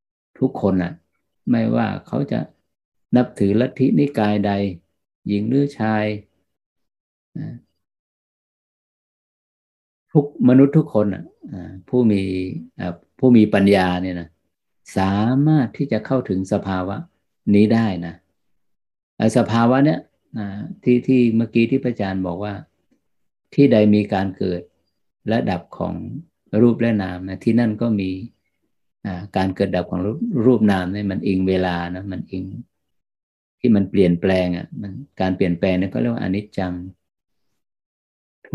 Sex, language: male, Thai